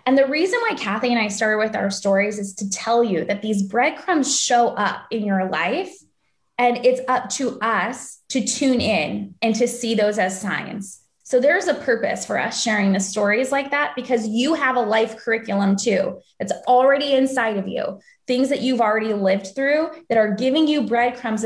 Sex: female